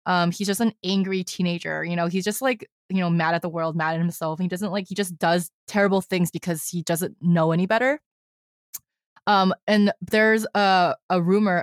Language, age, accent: English, 20-39, American